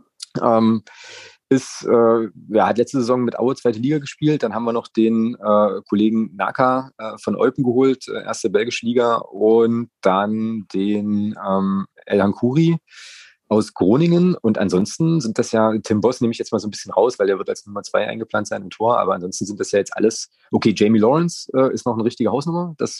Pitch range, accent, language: 105-125 Hz, German, German